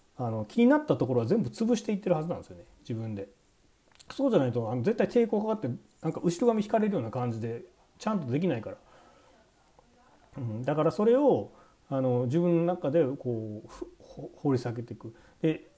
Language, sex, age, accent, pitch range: Japanese, male, 40-59, native, 120-190 Hz